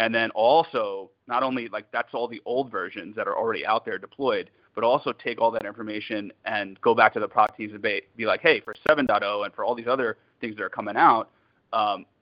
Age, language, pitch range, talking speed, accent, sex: 30-49, English, 105-130 Hz, 235 wpm, American, male